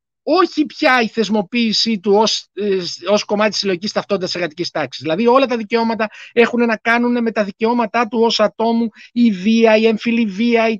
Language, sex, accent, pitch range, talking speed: Greek, male, native, 195-240 Hz, 180 wpm